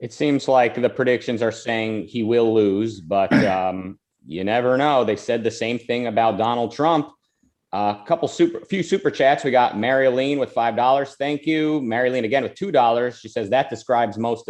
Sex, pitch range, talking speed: male, 110-140 Hz, 180 wpm